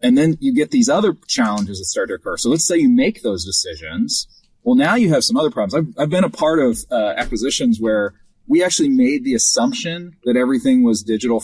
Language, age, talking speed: English, 30-49, 225 wpm